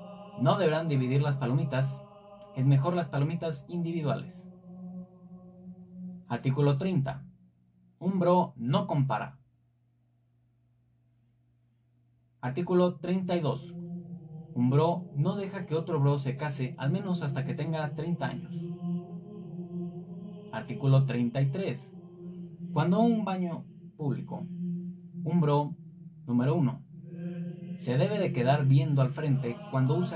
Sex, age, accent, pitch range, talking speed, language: male, 30-49, Mexican, 130-175 Hz, 105 wpm, Spanish